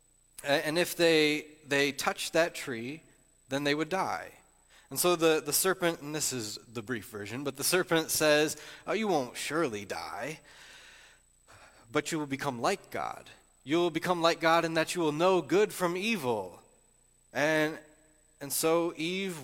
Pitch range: 140-180 Hz